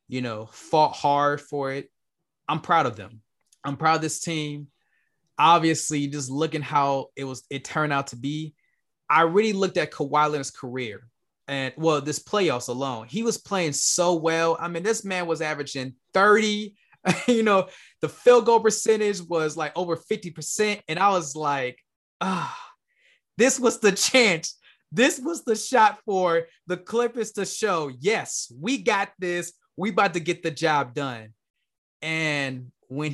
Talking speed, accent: 165 wpm, American